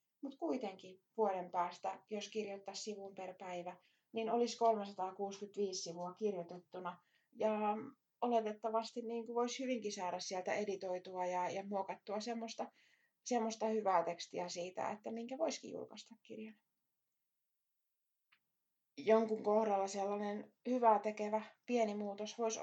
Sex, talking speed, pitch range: female, 110 wpm, 190-225 Hz